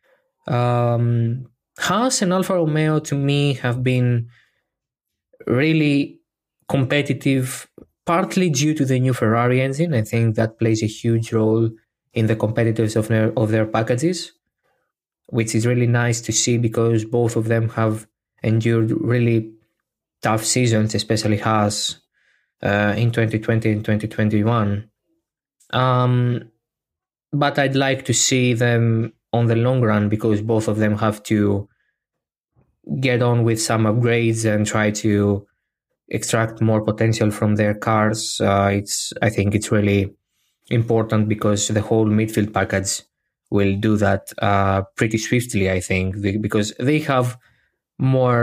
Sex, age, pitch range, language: male, 20-39, 105-120 Hz, Greek